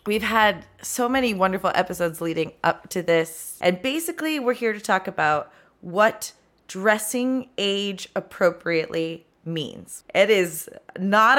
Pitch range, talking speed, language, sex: 170-215 Hz, 130 wpm, English, female